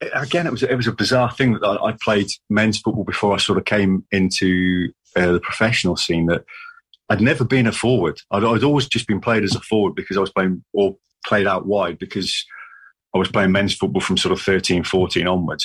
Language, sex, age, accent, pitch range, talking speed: English, male, 30-49, British, 95-120 Hz, 220 wpm